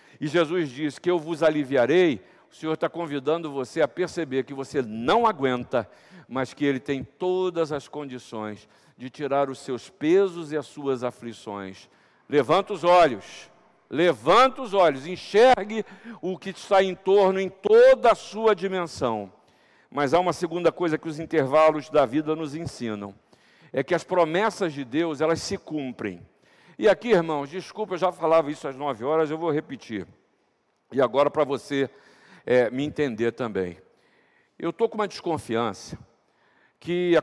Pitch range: 140-185 Hz